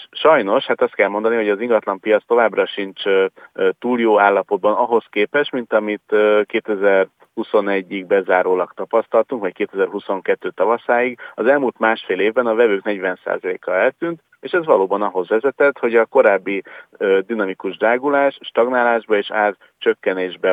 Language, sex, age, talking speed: Hungarian, male, 40-59, 140 wpm